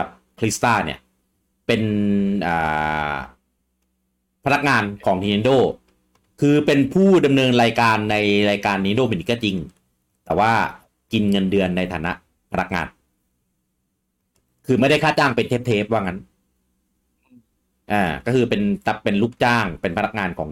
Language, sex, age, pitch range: English, male, 30-49, 65-105 Hz